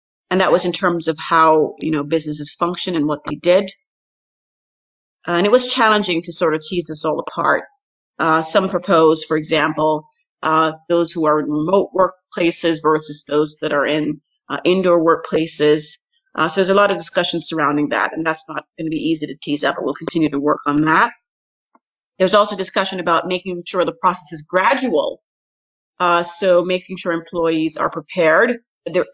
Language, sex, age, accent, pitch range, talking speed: English, female, 30-49, American, 160-195 Hz, 185 wpm